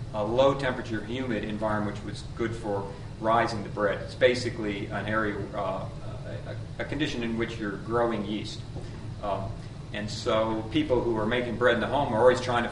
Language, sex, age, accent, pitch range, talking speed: English, male, 40-59, American, 105-120 Hz, 190 wpm